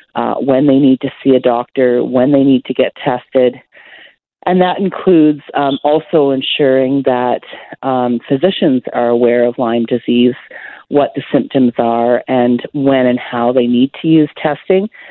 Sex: female